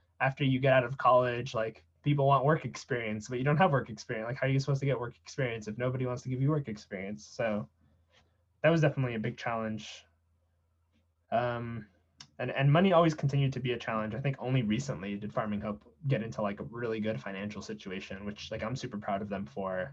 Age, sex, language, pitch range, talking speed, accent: 20-39, male, English, 100-130 Hz, 225 wpm, American